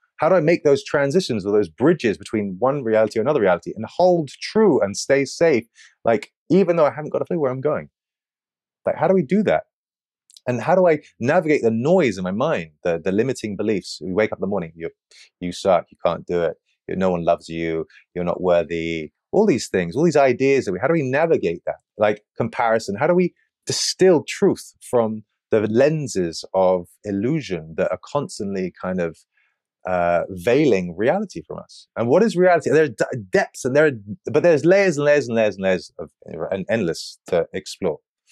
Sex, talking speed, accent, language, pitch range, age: male, 210 wpm, British, English, 95-145 Hz, 30-49